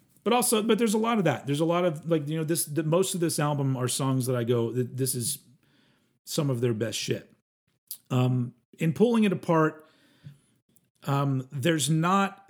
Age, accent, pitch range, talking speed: 40-59, American, 130-165 Hz, 190 wpm